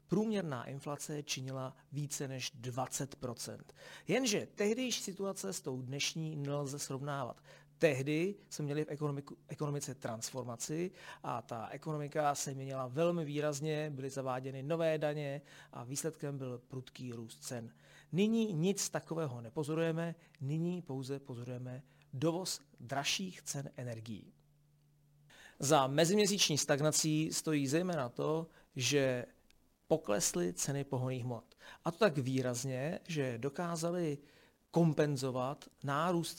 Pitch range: 135-165 Hz